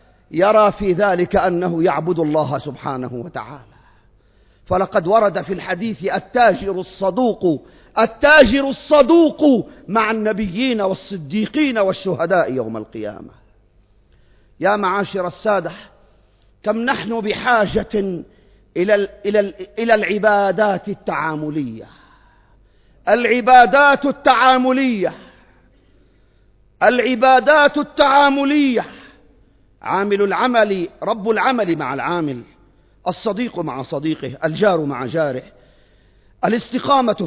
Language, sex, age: Arabic, male, 50-69